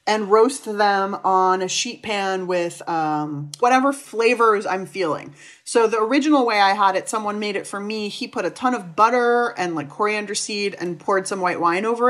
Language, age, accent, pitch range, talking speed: English, 30-49, American, 175-230 Hz, 205 wpm